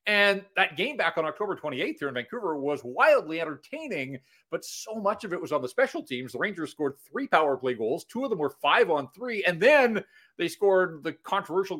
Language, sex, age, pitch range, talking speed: English, male, 40-59, 135-185 Hz, 220 wpm